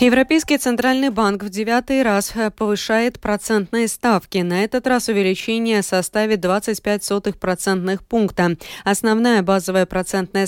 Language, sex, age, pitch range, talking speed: Russian, female, 20-39, 180-220 Hz, 115 wpm